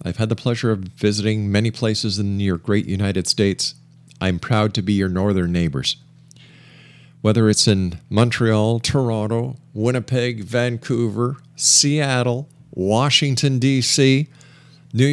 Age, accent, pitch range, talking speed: 50-69, American, 115-150 Hz, 125 wpm